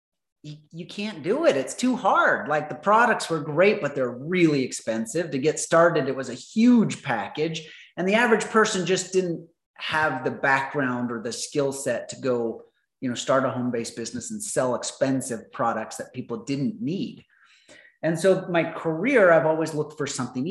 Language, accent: English, American